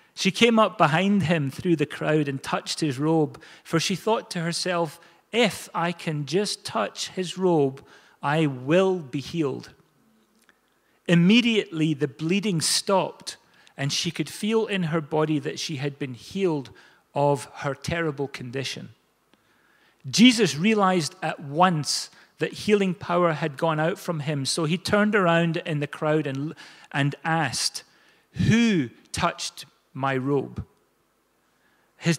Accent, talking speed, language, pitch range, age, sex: British, 140 wpm, English, 155-195 Hz, 40-59, male